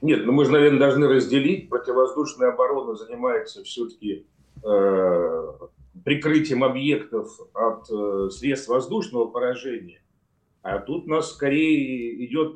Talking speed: 110 wpm